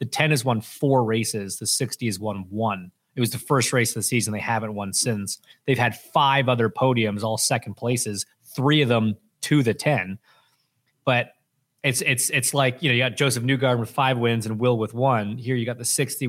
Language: English